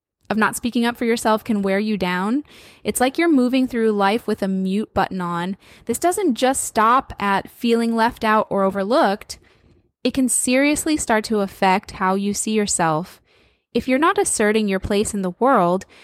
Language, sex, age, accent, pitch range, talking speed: English, female, 10-29, American, 195-230 Hz, 185 wpm